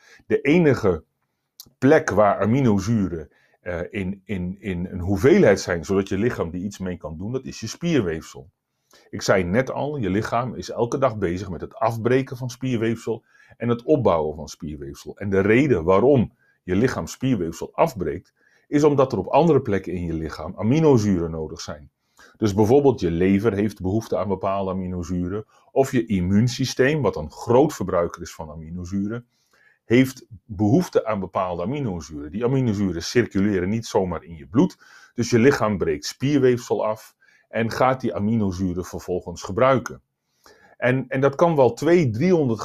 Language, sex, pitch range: Dutch, male, 90-125 Hz